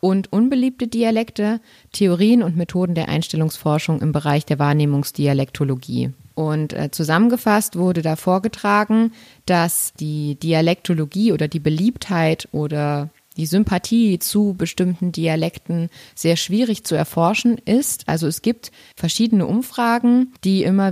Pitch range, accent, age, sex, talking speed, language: 160-200 Hz, German, 20-39, female, 120 wpm, German